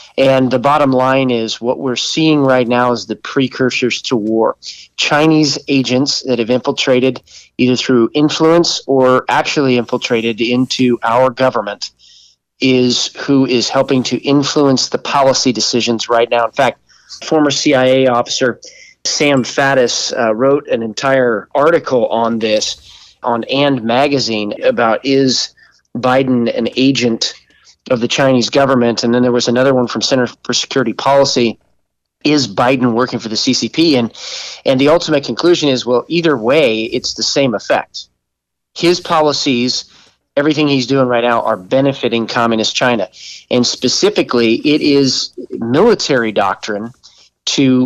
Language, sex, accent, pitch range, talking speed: English, male, American, 120-140 Hz, 145 wpm